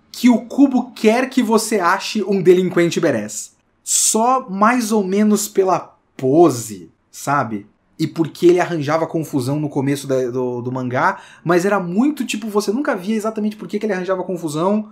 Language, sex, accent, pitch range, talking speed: Portuguese, male, Brazilian, 160-225 Hz, 165 wpm